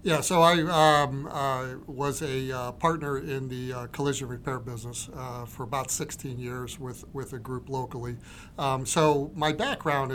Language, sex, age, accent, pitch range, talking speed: English, male, 50-69, American, 125-145 Hz, 170 wpm